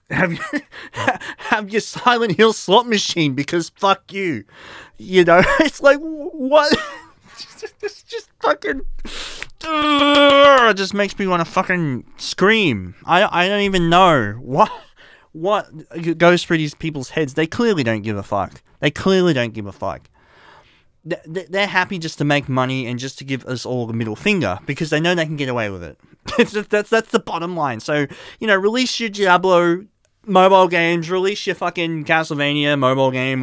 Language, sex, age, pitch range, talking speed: English, male, 30-49, 135-195 Hz, 180 wpm